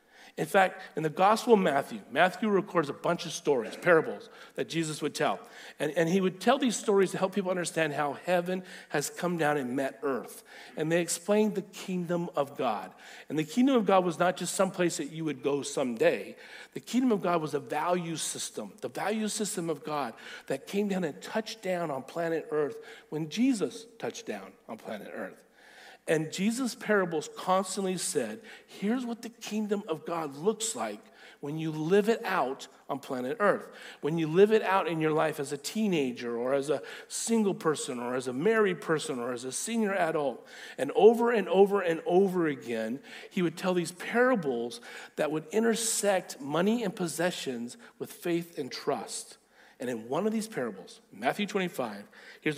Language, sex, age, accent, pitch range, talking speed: English, male, 50-69, American, 155-215 Hz, 190 wpm